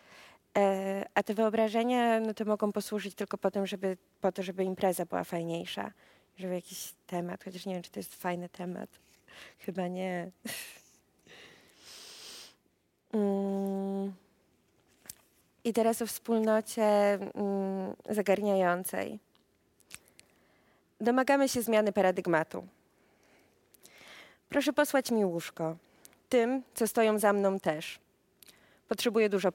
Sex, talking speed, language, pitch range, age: female, 100 wpm, Polish, 190-215 Hz, 20-39